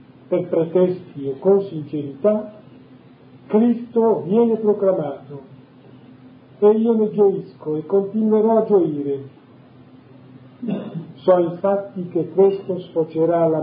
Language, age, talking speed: Italian, 40-59, 95 wpm